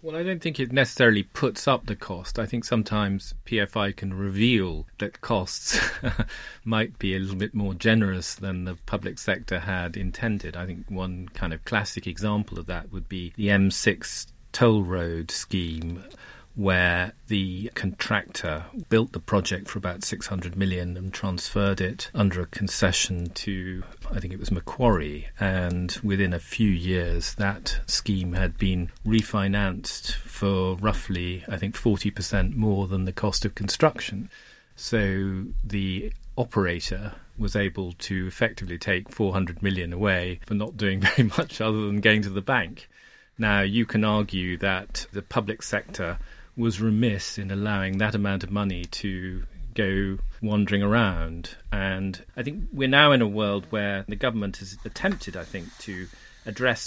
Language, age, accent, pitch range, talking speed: English, 40-59, British, 90-110 Hz, 155 wpm